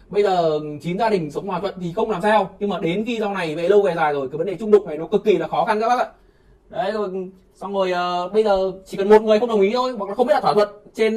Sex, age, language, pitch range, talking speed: male, 20-39, Vietnamese, 180-220 Hz, 320 wpm